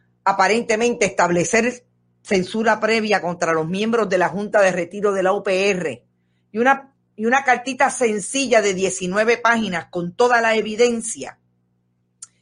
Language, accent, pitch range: Spanish, American, 175-235 Hz